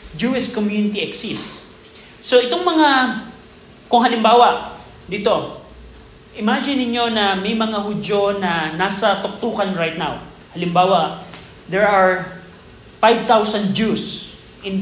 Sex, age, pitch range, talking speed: male, 20-39, 185-225 Hz, 105 wpm